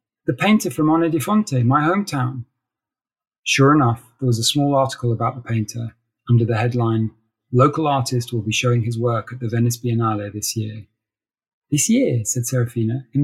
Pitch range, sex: 115-130 Hz, male